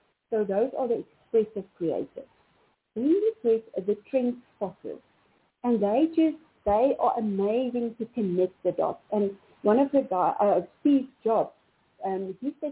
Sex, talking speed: female, 150 wpm